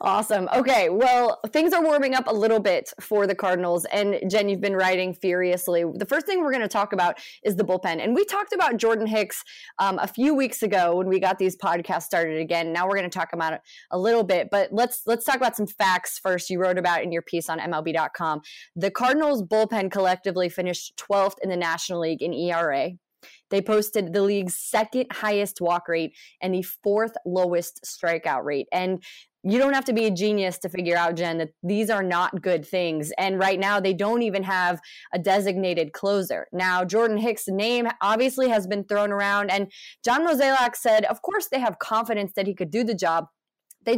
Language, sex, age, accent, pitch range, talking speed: English, female, 20-39, American, 180-220 Hz, 210 wpm